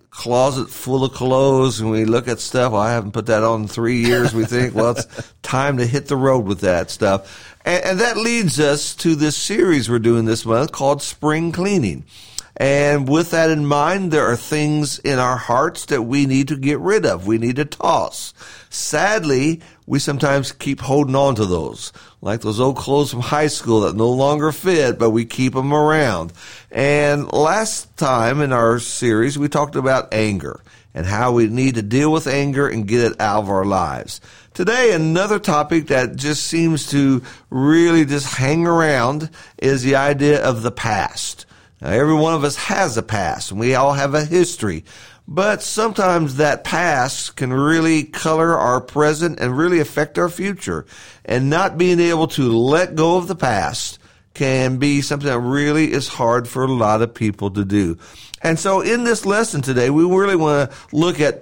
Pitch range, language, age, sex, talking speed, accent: 120-155 Hz, English, 50-69, male, 190 wpm, American